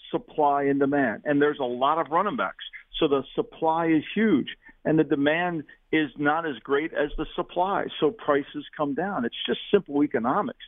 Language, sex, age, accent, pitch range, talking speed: English, male, 50-69, American, 145-220 Hz, 185 wpm